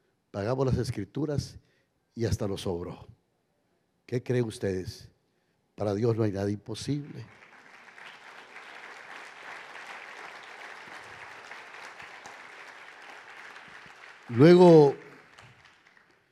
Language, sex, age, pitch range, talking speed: Spanish, male, 60-79, 110-150 Hz, 65 wpm